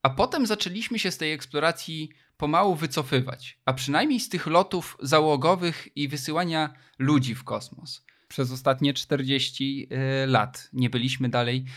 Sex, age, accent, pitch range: male, 20-39, native, 130-155 Hz